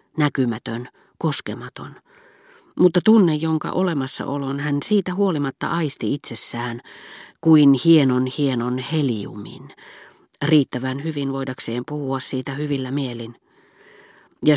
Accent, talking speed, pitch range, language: native, 95 wpm, 125-155 Hz, Finnish